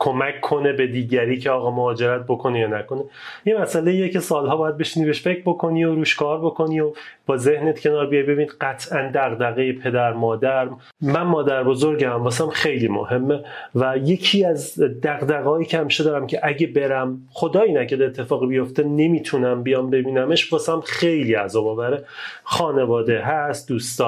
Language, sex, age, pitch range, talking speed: Persian, male, 30-49, 130-170 Hz, 155 wpm